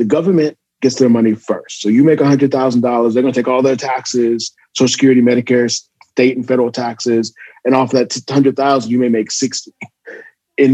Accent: American